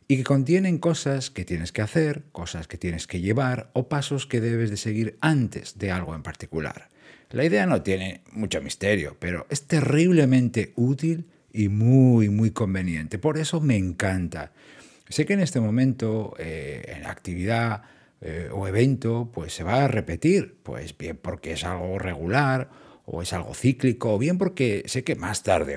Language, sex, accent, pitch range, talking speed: Spanish, male, Spanish, 95-130 Hz, 175 wpm